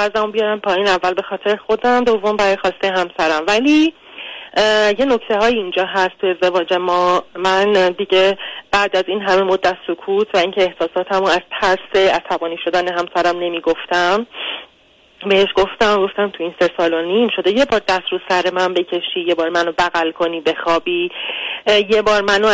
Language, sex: Persian, female